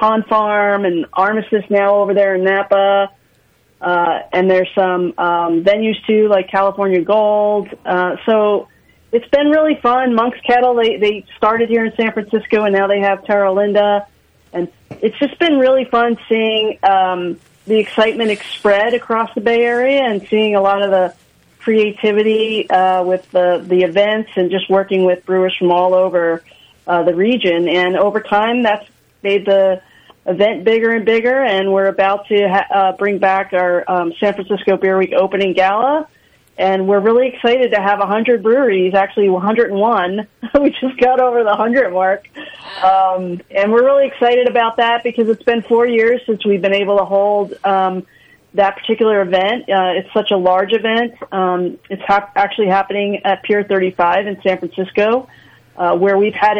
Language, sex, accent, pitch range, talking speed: English, female, American, 190-225 Hz, 170 wpm